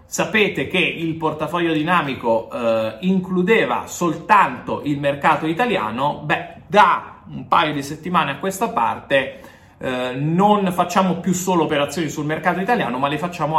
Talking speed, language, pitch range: 140 wpm, Italian, 130-180 Hz